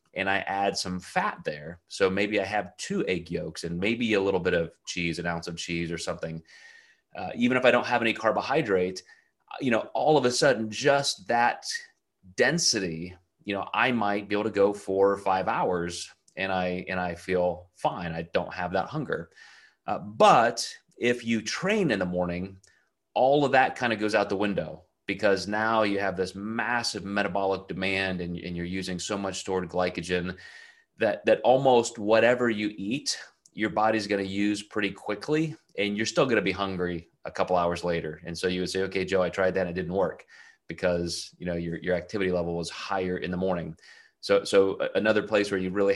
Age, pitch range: 30-49, 90-105 Hz